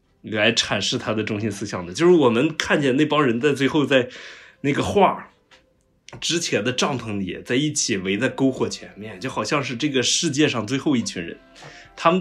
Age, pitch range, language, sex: 20-39, 110-150 Hz, Chinese, male